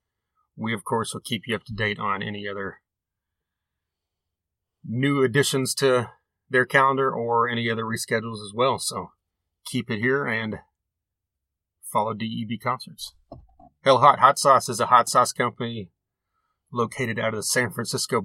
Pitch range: 105-135 Hz